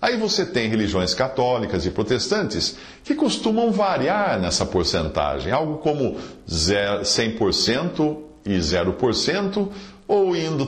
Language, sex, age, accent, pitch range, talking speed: English, male, 50-69, Brazilian, 100-150 Hz, 105 wpm